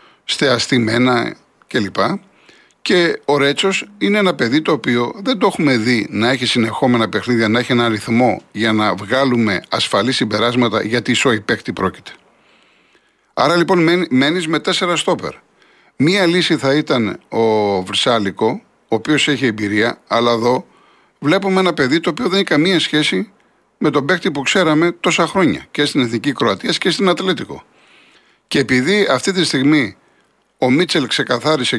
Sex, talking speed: male, 155 wpm